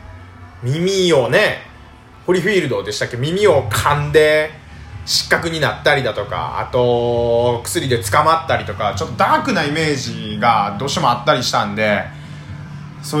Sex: male